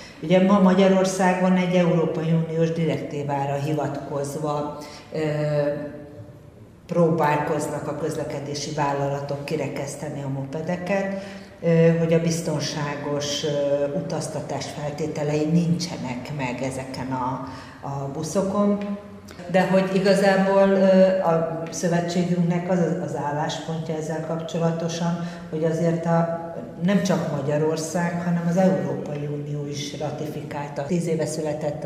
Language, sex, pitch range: Hungarian, female, 145-175 Hz